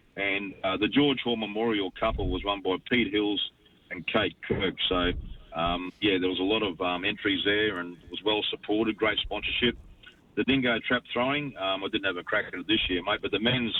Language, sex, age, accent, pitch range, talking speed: English, male, 40-59, Australian, 90-110 Hz, 215 wpm